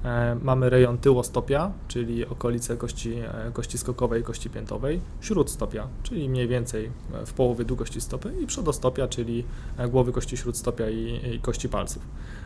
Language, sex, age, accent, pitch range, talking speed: Polish, male, 20-39, native, 115-135 Hz, 135 wpm